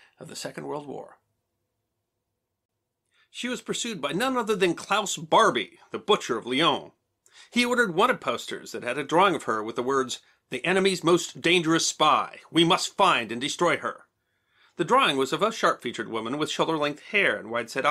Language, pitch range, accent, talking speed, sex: English, 130-195 Hz, American, 185 wpm, male